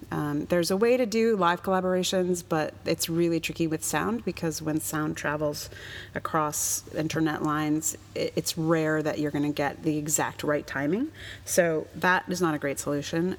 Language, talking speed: English, 175 wpm